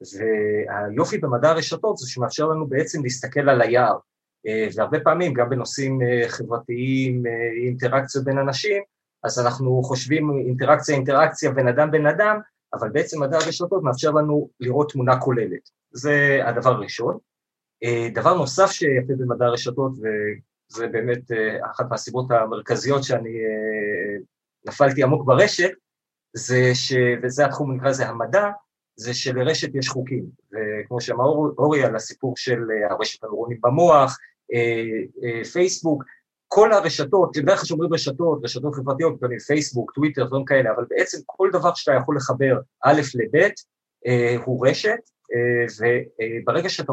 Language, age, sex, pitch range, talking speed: Hebrew, 30-49, male, 120-150 Hz, 130 wpm